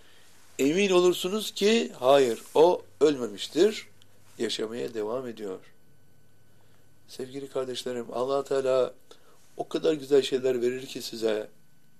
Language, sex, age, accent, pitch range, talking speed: Turkish, male, 60-79, native, 115-145 Hz, 100 wpm